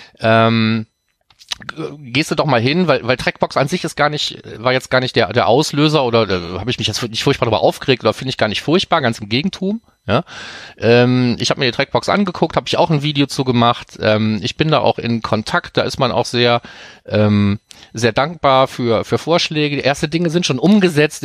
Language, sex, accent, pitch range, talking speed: German, male, German, 115-140 Hz, 225 wpm